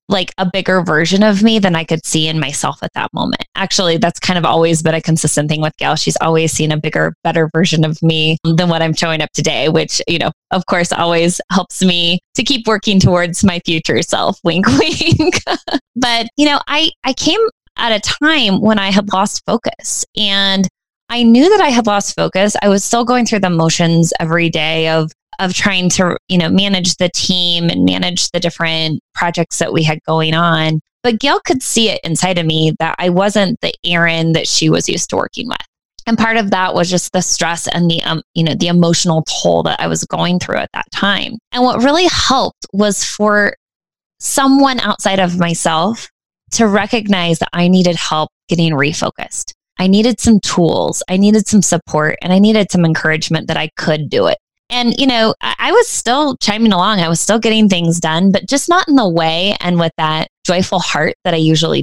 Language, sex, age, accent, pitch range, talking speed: English, female, 20-39, American, 165-220 Hz, 210 wpm